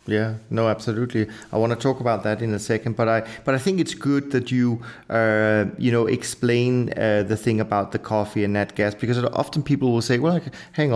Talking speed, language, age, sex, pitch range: 235 wpm, English, 30-49, male, 100-115 Hz